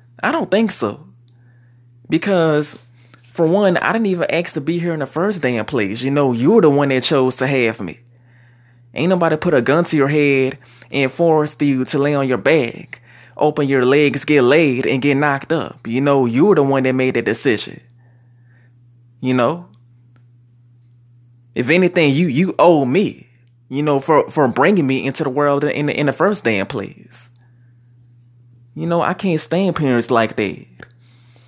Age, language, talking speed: 20-39, English, 180 wpm